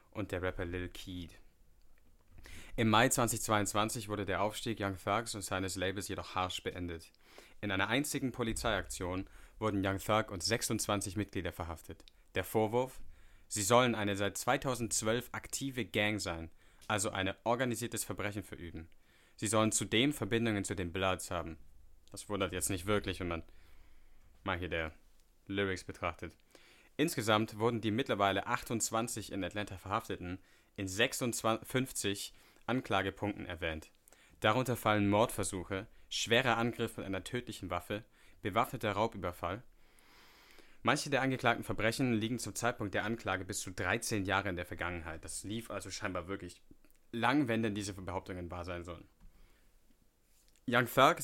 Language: English